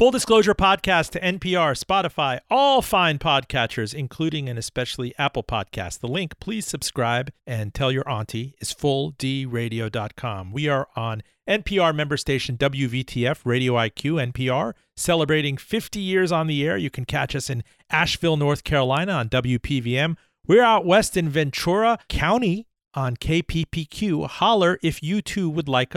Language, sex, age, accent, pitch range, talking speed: English, male, 40-59, American, 125-175 Hz, 150 wpm